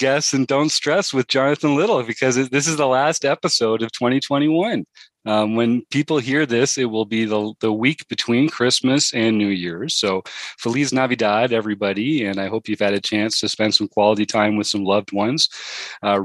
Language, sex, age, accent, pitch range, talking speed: English, male, 40-59, American, 105-125 Hz, 190 wpm